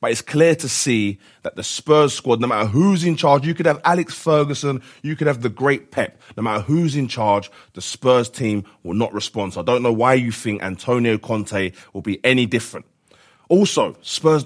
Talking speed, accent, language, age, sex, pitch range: 210 wpm, British, English, 30-49, male, 105-145 Hz